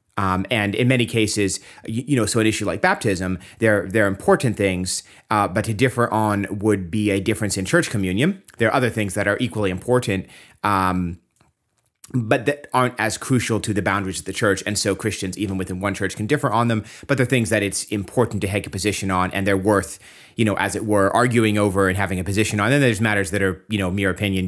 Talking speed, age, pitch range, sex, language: 235 wpm, 30-49, 95-115 Hz, male, English